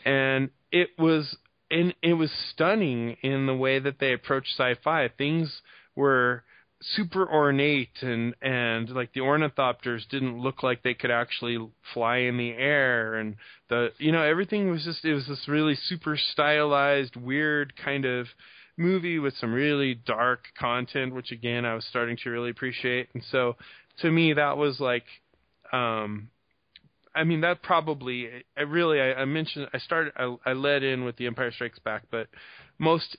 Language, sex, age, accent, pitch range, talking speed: English, male, 20-39, American, 120-145 Hz, 170 wpm